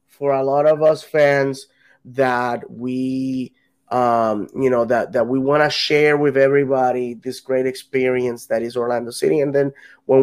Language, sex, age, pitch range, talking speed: English, male, 20-39, 130-150 Hz, 170 wpm